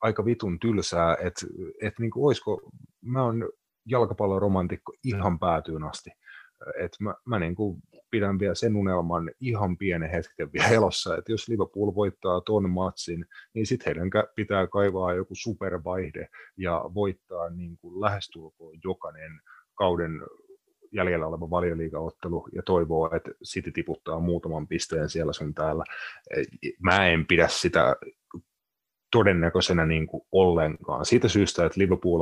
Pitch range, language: 80-100 Hz, Finnish